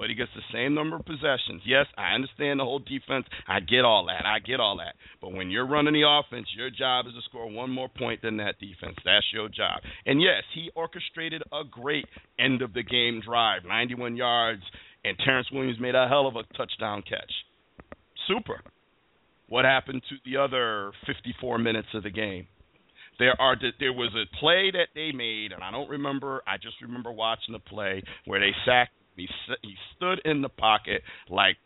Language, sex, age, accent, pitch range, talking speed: English, male, 50-69, American, 115-145 Hz, 190 wpm